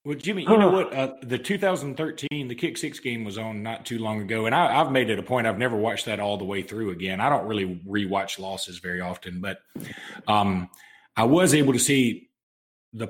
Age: 30-49